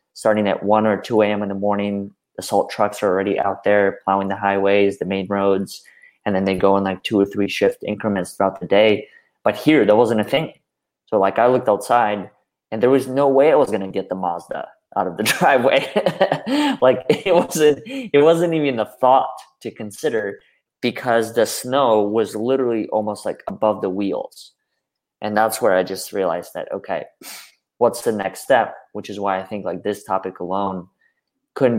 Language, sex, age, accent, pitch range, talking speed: English, male, 20-39, American, 95-120 Hz, 195 wpm